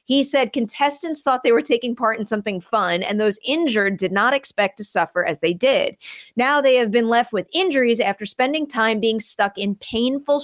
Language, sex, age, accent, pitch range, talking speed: English, female, 30-49, American, 185-235 Hz, 205 wpm